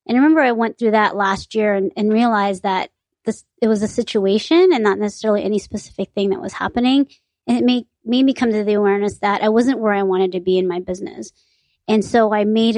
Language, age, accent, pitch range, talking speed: English, 30-49, American, 205-235 Hz, 240 wpm